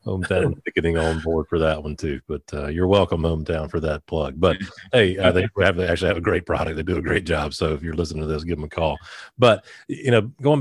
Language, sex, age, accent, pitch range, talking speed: English, male, 40-59, American, 85-105 Hz, 260 wpm